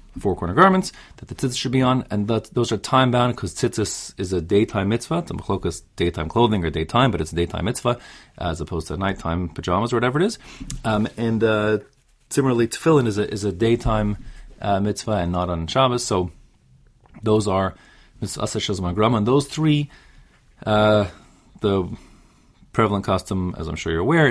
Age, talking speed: 30-49, 175 wpm